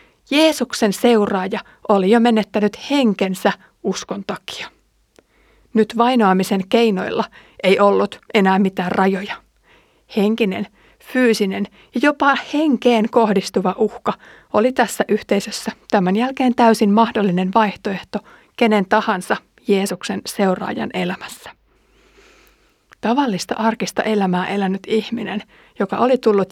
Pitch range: 200-245 Hz